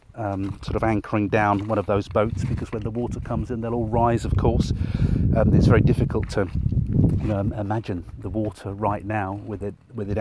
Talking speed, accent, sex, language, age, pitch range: 195 wpm, British, male, English, 40-59, 100-120 Hz